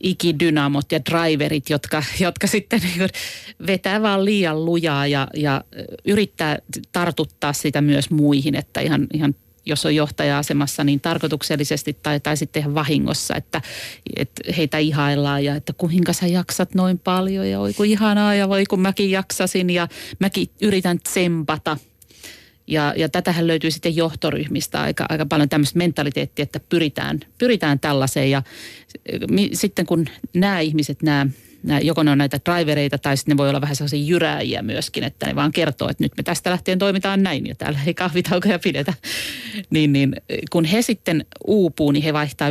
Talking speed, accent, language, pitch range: 160 wpm, native, Finnish, 145-180 Hz